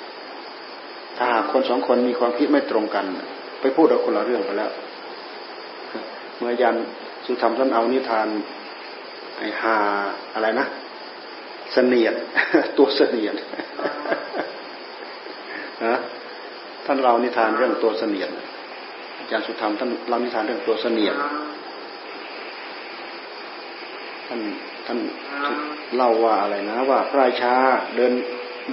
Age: 30-49